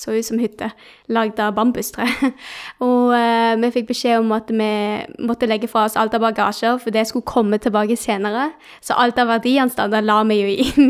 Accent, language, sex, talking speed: Swedish, English, female, 195 wpm